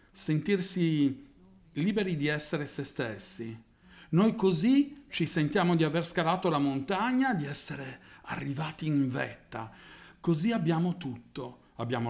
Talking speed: 120 wpm